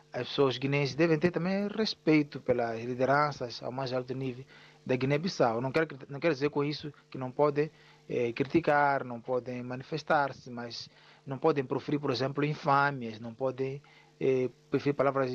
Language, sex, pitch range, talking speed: Portuguese, male, 130-150 Hz, 165 wpm